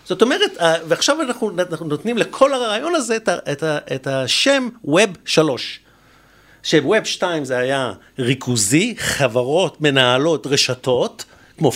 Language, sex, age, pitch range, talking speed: Hebrew, male, 50-69, 135-220 Hz, 105 wpm